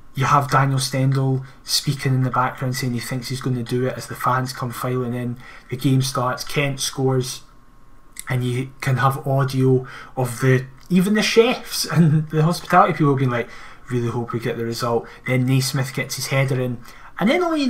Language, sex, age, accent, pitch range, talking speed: English, male, 20-39, British, 125-150 Hz, 200 wpm